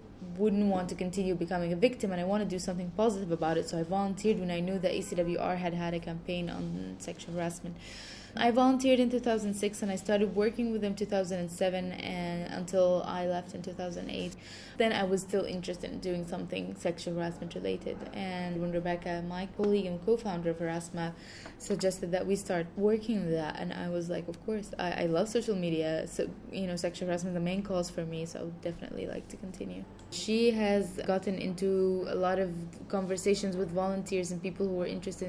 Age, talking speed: 10-29, 200 wpm